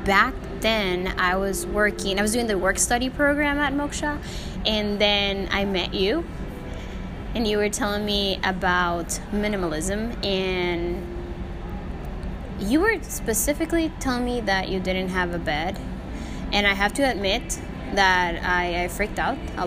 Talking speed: 150 wpm